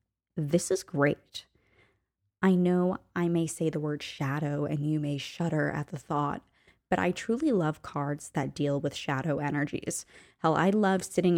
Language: English